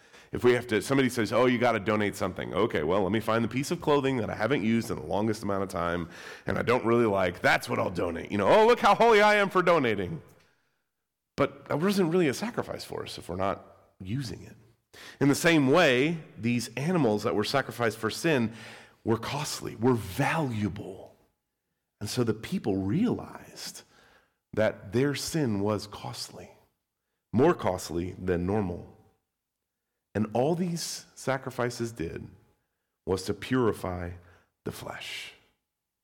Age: 40-59